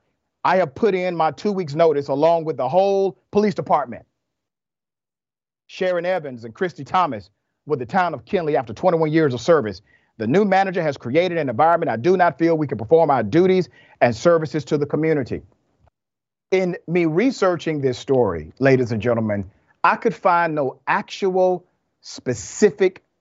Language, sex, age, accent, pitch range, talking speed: English, male, 40-59, American, 130-175 Hz, 165 wpm